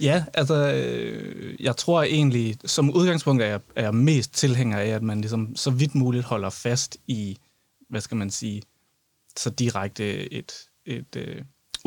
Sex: male